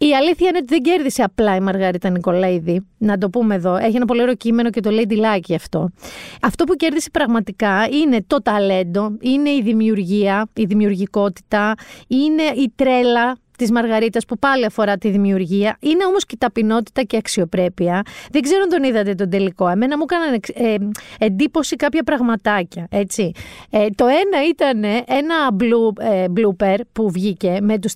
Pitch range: 200-265 Hz